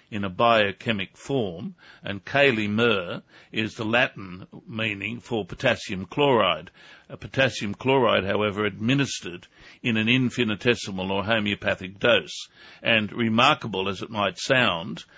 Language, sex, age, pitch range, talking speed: English, male, 60-79, 105-125 Hz, 120 wpm